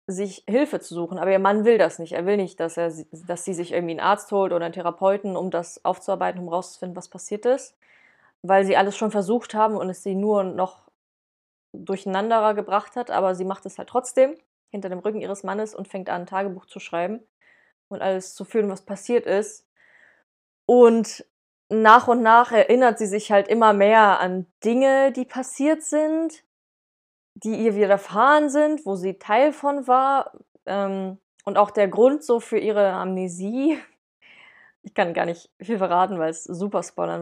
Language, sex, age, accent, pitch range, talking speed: German, female, 20-39, German, 190-235 Hz, 180 wpm